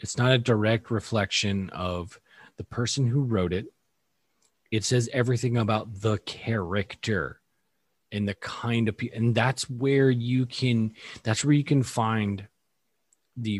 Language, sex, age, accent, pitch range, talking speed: English, male, 30-49, American, 95-120 Hz, 145 wpm